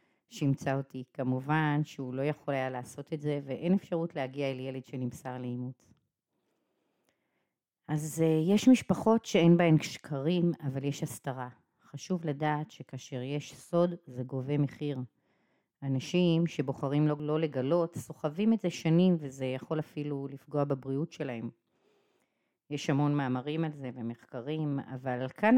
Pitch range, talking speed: 130-170 Hz, 135 wpm